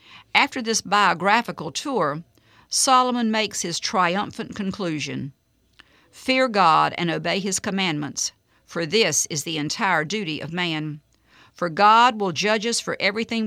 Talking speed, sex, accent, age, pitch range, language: 135 wpm, female, American, 50-69, 160-220 Hz, English